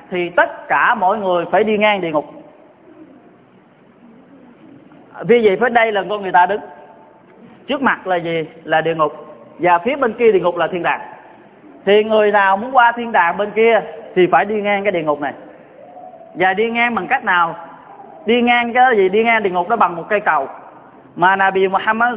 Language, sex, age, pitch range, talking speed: Vietnamese, male, 20-39, 180-230 Hz, 200 wpm